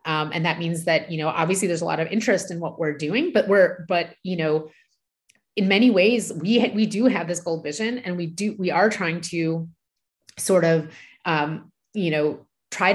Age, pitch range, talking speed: 30-49, 165-195 Hz, 210 wpm